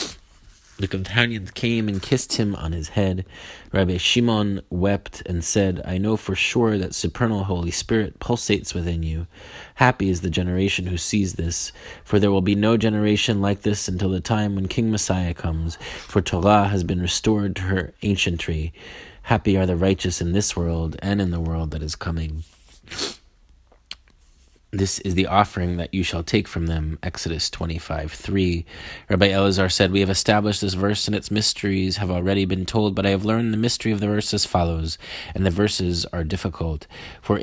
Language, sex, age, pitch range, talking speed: English, male, 30-49, 85-105 Hz, 185 wpm